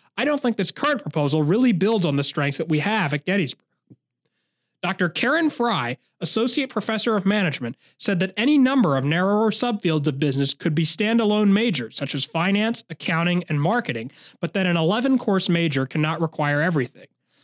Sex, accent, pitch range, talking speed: male, American, 150-215 Hz, 170 wpm